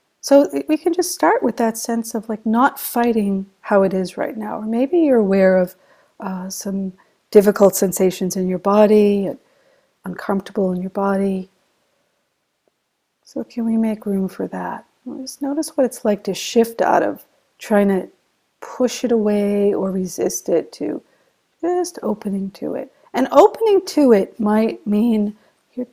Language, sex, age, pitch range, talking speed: English, female, 50-69, 195-250 Hz, 160 wpm